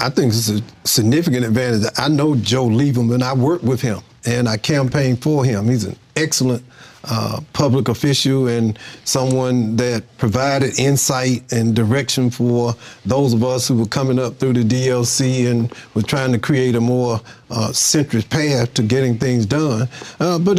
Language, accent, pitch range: English, American, 120-145 Hz